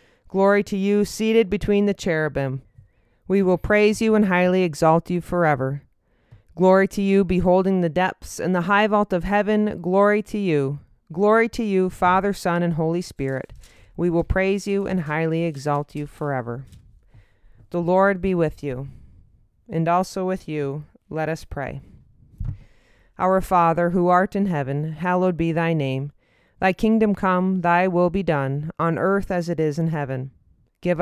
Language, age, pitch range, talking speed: English, 30-49, 145-190 Hz, 165 wpm